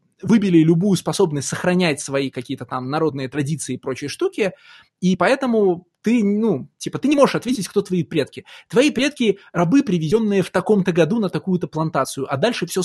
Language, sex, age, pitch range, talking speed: Russian, male, 20-39, 155-195 Hz, 180 wpm